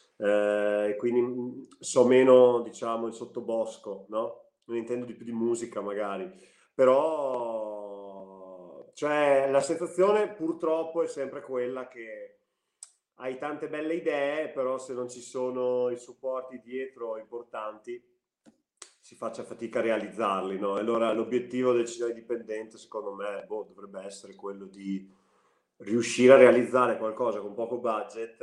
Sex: male